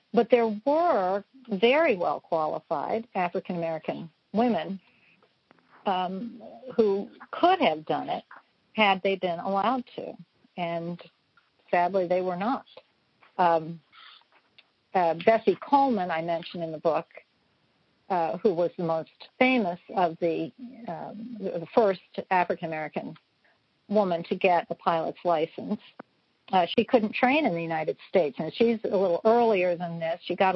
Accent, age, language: American, 50-69, English